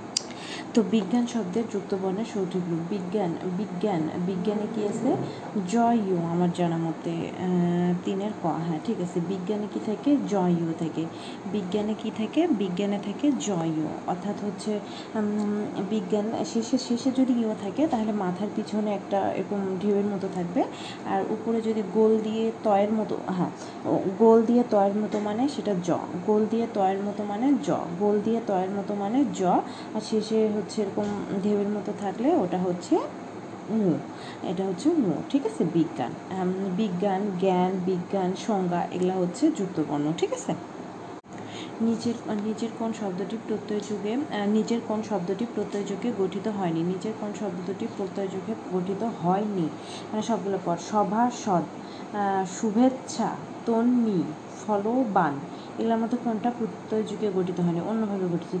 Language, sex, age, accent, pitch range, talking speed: Bengali, female, 30-49, native, 190-220 Hz, 140 wpm